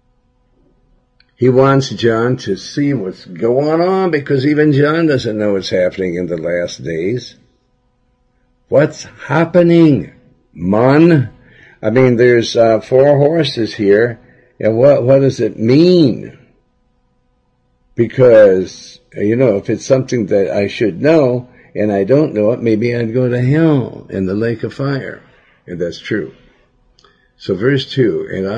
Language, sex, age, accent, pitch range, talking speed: English, male, 60-79, American, 100-130 Hz, 140 wpm